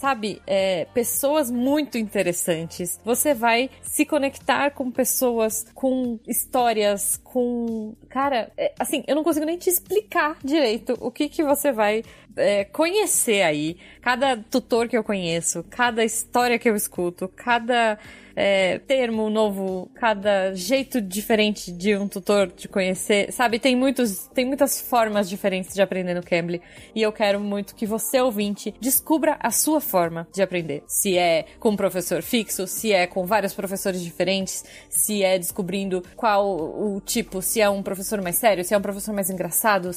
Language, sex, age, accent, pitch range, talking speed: Portuguese, female, 20-39, Brazilian, 195-255 Hz, 155 wpm